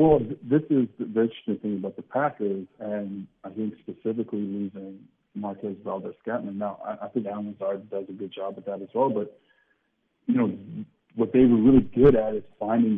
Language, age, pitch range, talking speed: English, 40-59, 100-120 Hz, 180 wpm